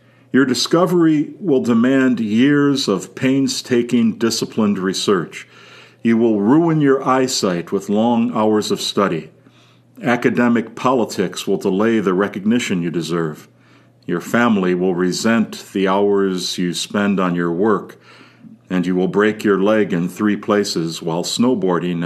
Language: English